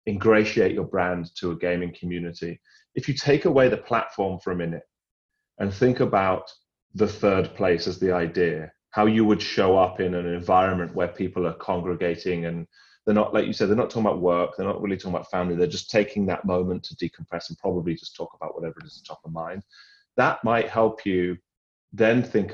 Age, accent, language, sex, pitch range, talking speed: 30-49, British, English, male, 90-110 Hz, 215 wpm